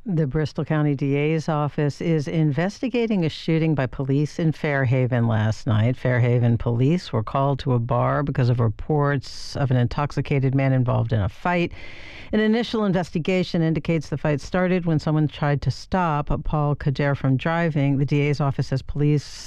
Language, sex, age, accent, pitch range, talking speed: English, female, 60-79, American, 130-170 Hz, 165 wpm